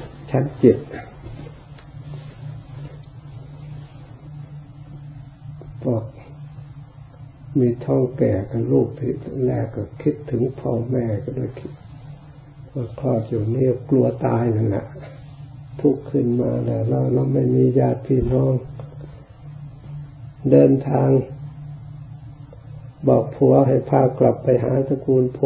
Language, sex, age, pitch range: Thai, male, 60-79, 125-140 Hz